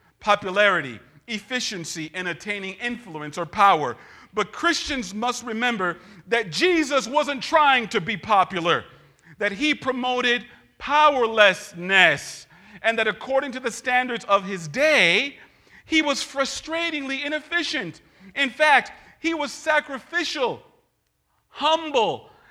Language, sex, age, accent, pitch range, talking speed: English, male, 40-59, American, 185-275 Hz, 110 wpm